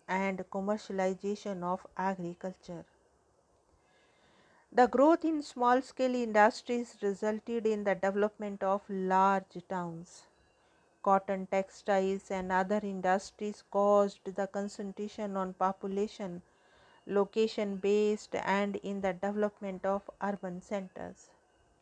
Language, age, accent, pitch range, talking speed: English, 50-69, Indian, 195-215 Hz, 95 wpm